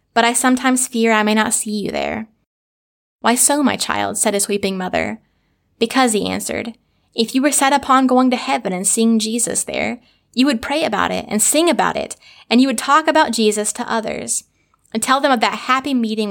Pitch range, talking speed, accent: 210-250 Hz, 210 wpm, American